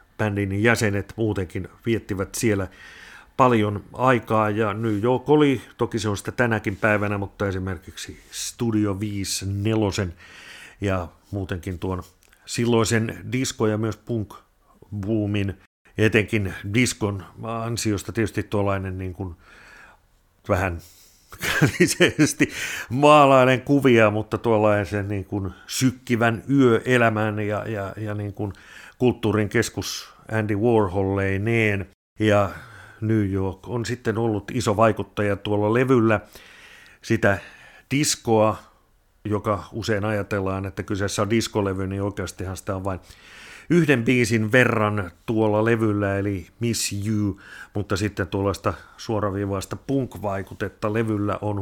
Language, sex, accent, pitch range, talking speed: Finnish, male, native, 100-115 Hz, 110 wpm